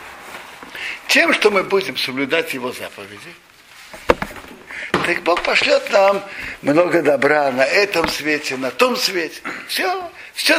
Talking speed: 120 wpm